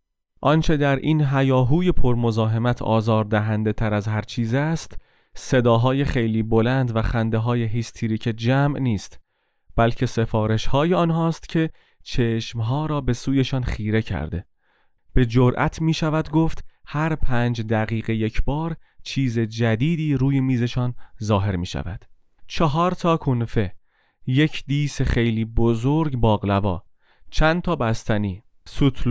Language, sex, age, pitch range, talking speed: Persian, male, 30-49, 110-140 Hz, 120 wpm